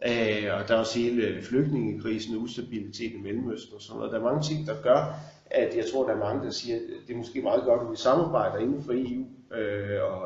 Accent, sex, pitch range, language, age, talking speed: native, male, 105-140 Hz, Danish, 40-59, 240 wpm